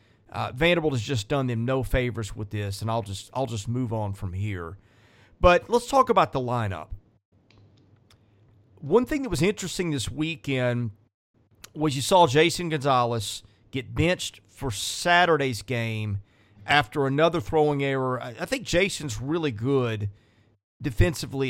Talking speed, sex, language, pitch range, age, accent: 150 wpm, male, English, 110-150 Hz, 40-59, American